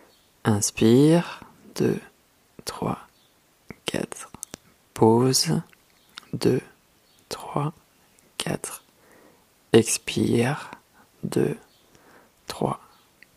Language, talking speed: French, 50 wpm